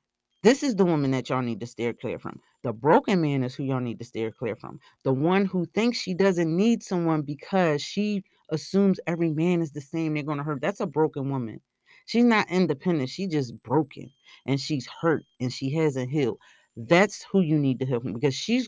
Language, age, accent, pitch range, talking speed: English, 30-49, American, 145-195 Hz, 215 wpm